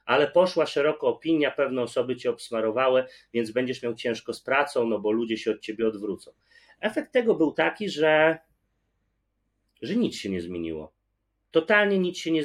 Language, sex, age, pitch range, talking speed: Polish, male, 30-49, 130-190 Hz, 170 wpm